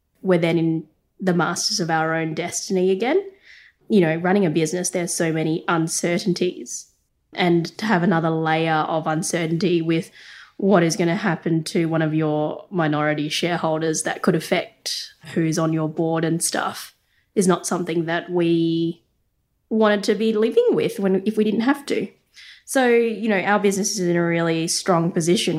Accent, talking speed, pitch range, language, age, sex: Australian, 175 wpm, 160-195 Hz, English, 20-39, female